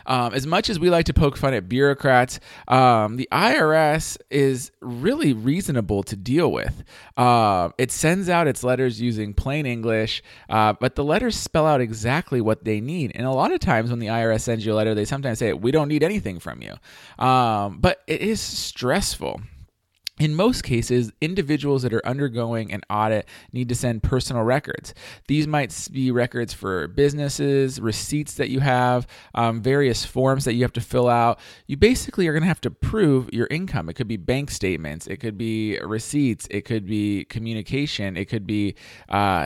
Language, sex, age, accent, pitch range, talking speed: English, male, 20-39, American, 110-140 Hz, 190 wpm